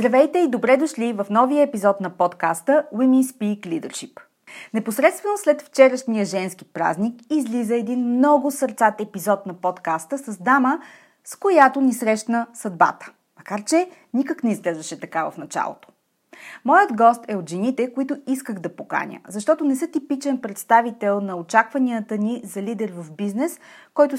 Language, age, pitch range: Bulgarian, 30-49, 190-265 Hz